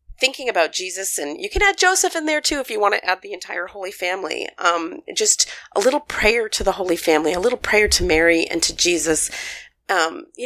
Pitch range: 165-240 Hz